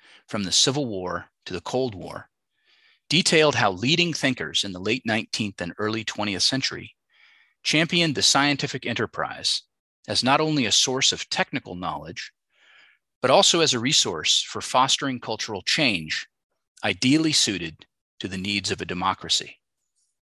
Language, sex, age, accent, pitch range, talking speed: English, male, 30-49, American, 105-145 Hz, 145 wpm